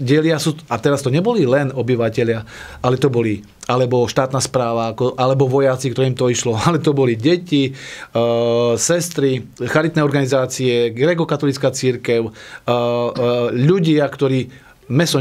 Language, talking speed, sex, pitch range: Slovak, 125 wpm, male, 120-140 Hz